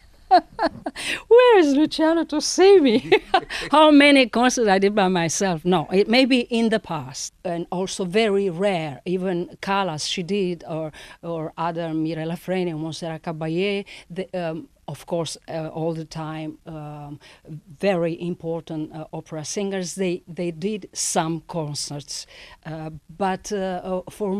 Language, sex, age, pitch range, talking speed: English, female, 50-69, 170-215 Hz, 140 wpm